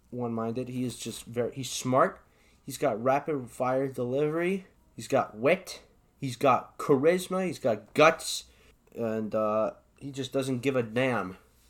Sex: male